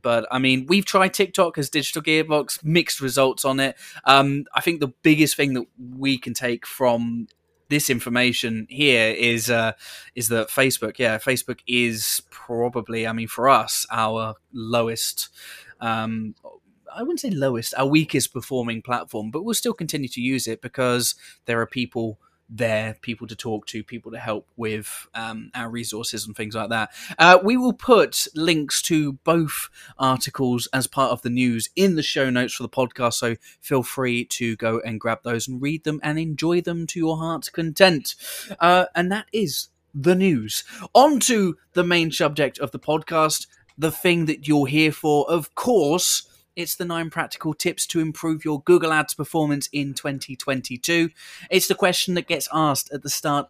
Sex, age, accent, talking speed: male, 10-29, British, 180 wpm